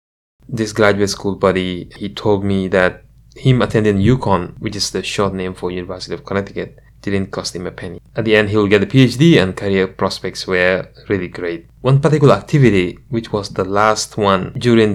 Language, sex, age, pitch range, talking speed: English, male, 20-39, 95-120 Hz, 190 wpm